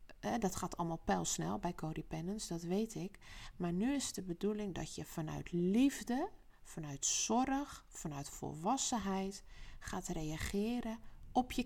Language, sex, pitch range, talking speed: Dutch, female, 160-220 Hz, 135 wpm